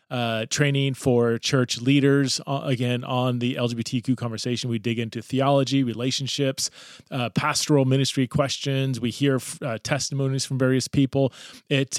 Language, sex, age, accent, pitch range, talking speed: English, male, 30-49, American, 120-140 Hz, 140 wpm